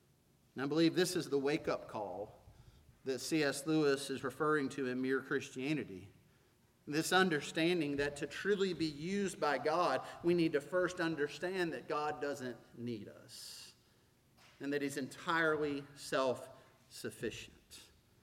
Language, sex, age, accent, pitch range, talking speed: English, male, 40-59, American, 140-215 Hz, 135 wpm